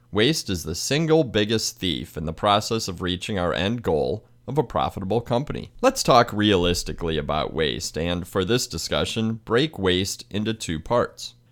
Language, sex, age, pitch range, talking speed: English, male, 30-49, 95-120 Hz, 165 wpm